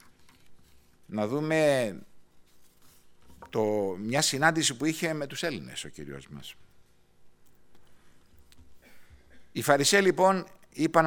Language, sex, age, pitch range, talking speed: Greek, male, 60-79, 90-130 Hz, 90 wpm